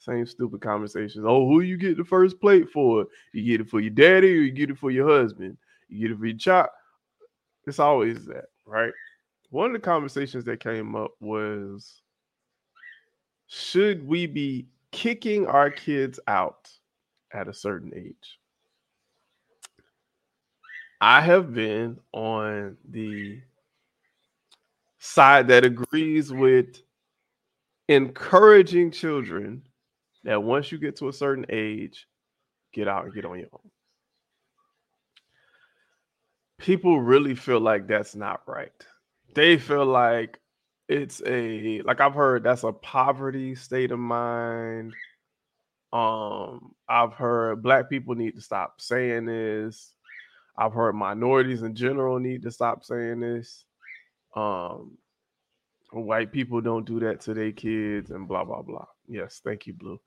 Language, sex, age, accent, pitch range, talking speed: English, male, 20-39, American, 110-145 Hz, 135 wpm